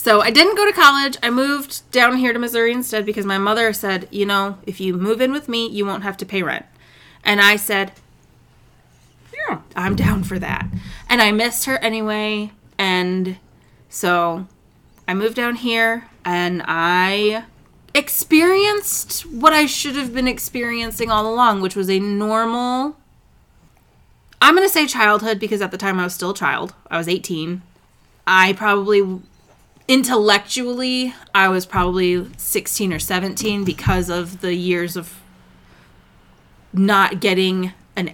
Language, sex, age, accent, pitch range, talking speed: English, female, 20-39, American, 180-235 Hz, 155 wpm